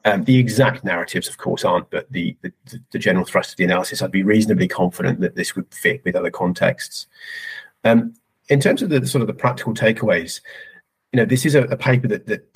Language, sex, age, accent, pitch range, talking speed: English, male, 30-49, British, 105-135 Hz, 215 wpm